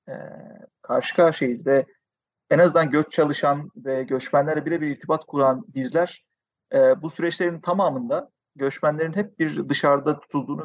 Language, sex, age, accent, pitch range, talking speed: Turkish, male, 40-59, native, 135-165 Hz, 120 wpm